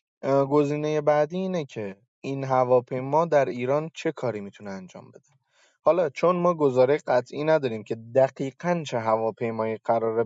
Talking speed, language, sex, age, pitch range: 140 wpm, Persian, male, 20-39, 115-150 Hz